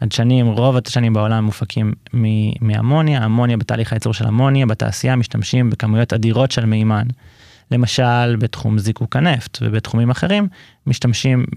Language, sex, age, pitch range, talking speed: Hebrew, male, 20-39, 115-130 Hz, 125 wpm